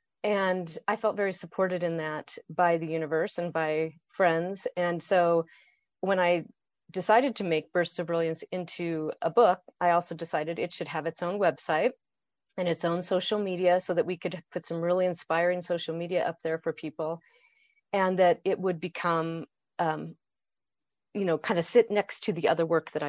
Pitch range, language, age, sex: 165-210 Hz, English, 40-59, female